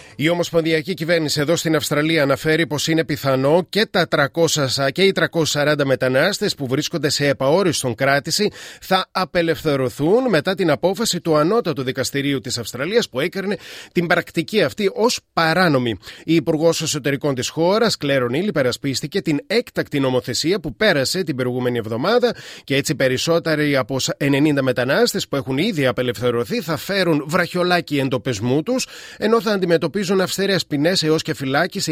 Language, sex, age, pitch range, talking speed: Greek, male, 30-49, 135-180 Hz, 150 wpm